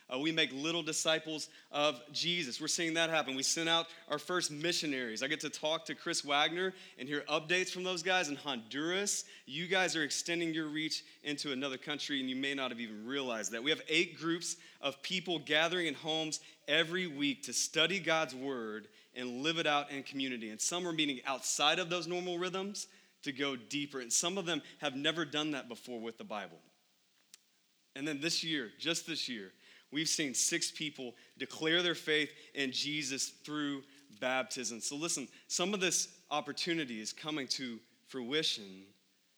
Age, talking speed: 30-49, 185 wpm